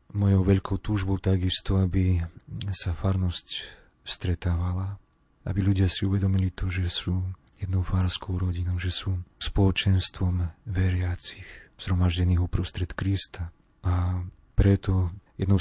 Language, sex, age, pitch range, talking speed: Slovak, male, 30-49, 90-100 Hz, 110 wpm